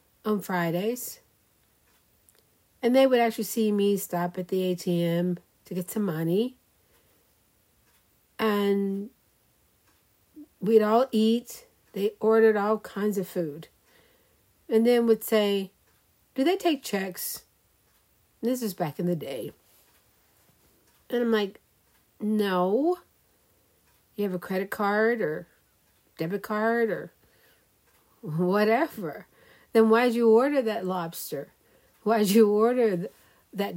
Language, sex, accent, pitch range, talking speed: English, female, American, 185-230 Hz, 115 wpm